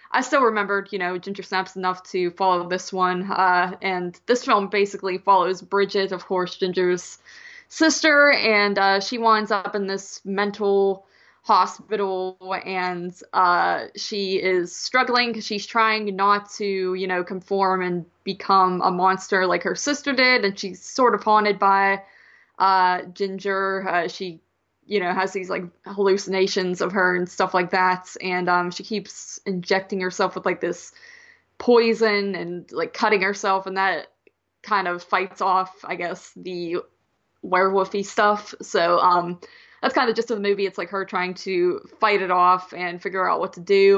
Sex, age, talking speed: female, 20-39, 165 wpm